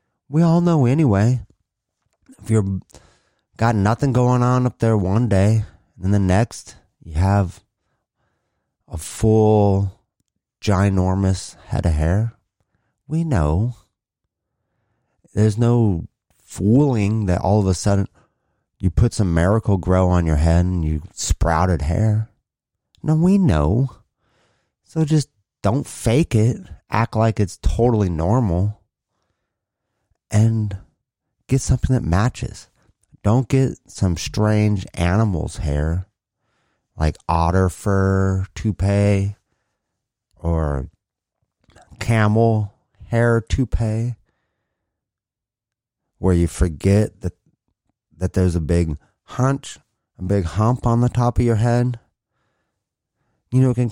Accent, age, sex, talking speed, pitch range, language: American, 30-49, male, 110 wpm, 90-115 Hz, English